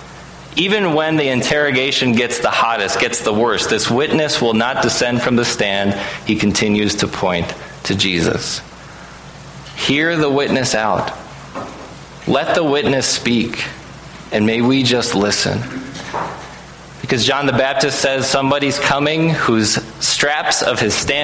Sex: male